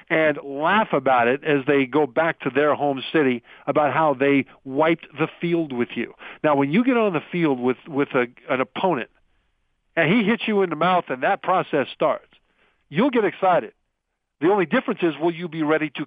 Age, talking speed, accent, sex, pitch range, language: 50-69, 205 wpm, American, male, 135-165 Hz, English